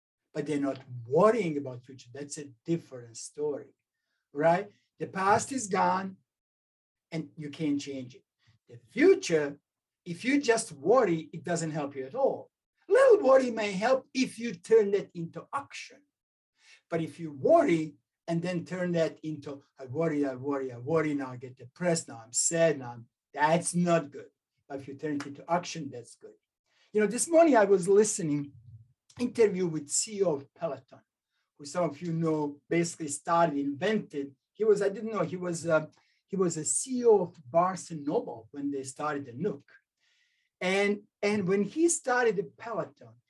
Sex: male